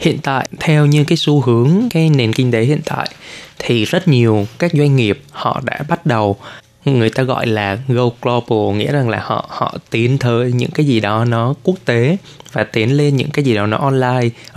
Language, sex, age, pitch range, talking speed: Vietnamese, male, 20-39, 115-145 Hz, 215 wpm